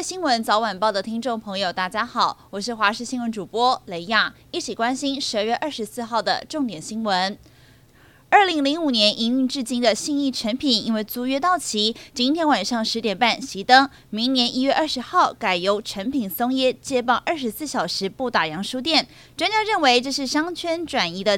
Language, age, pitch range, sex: Chinese, 20-39, 220-285 Hz, female